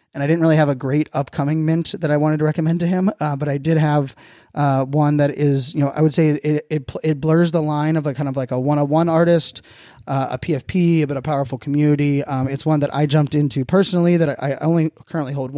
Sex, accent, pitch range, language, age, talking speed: male, American, 135-150 Hz, English, 20-39, 260 wpm